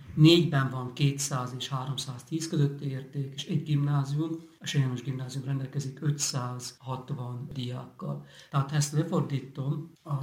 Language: Hungarian